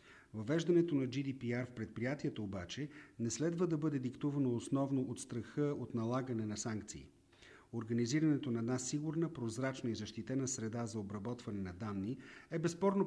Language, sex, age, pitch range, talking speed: Bulgarian, male, 40-59, 115-150 Hz, 145 wpm